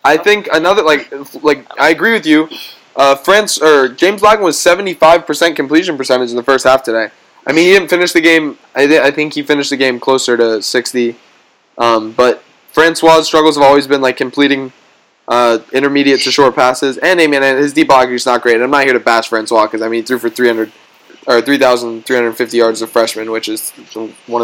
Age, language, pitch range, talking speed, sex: 10-29, English, 120-155 Hz, 215 wpm, male